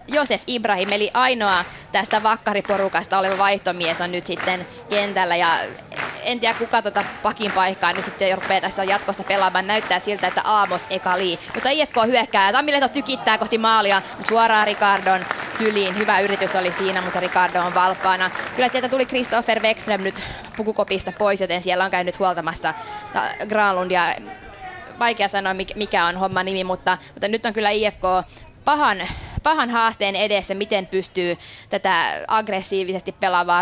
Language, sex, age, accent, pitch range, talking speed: Finnish, female, 20-39, native, 185-220 Hz, 150 wpm